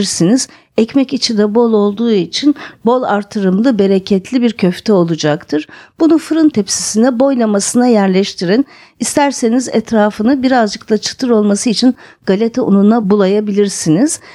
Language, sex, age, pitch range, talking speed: Turkish, female, 50-69, 195-260 Hz, 115 wpm